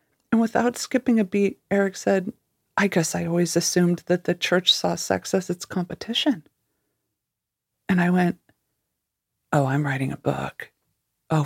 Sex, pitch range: female, 160-195 Hz